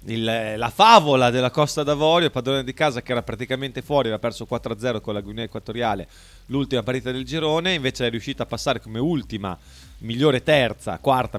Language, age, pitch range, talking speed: Italian, 30-49, 95-125 Hz, 185 wpm